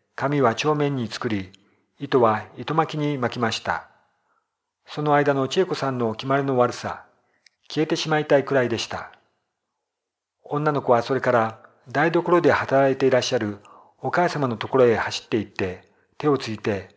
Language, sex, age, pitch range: Japanese, male, 50-69, 115-145 Hz